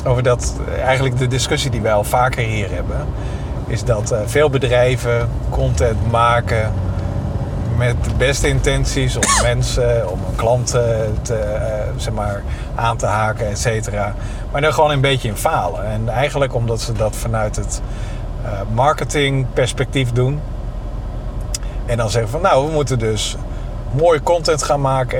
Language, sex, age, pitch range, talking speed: Dutch, male, 50-69, 110-130 Hz, 145 wpm